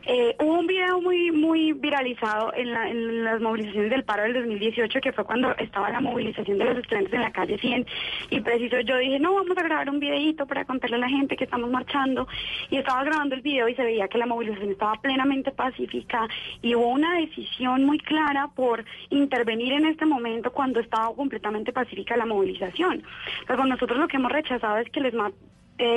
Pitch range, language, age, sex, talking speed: 215-265 Hz, Spanish, 20-39, female, 205 wpm